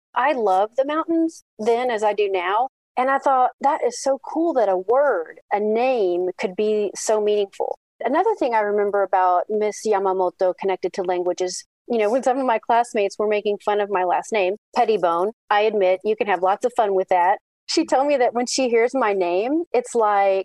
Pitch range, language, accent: 190-245 Hz, English, American